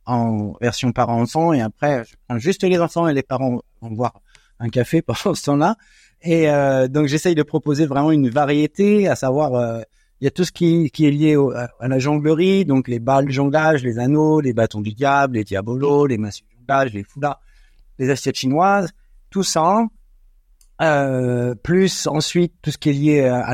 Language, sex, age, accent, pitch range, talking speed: French, male, 50-69, French, 115-155 Hz, 200 wpm